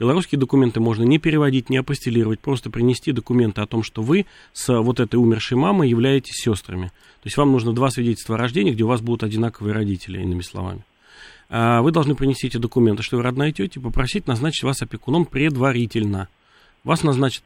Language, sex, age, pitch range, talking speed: Russian, male, 30-49, 115-135 Hz, 180 wpm